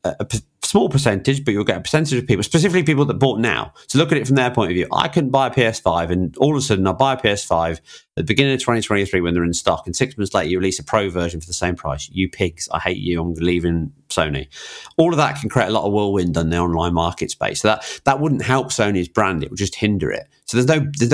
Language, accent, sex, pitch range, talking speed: English, British, male, 90-130 Hz, 280 wpm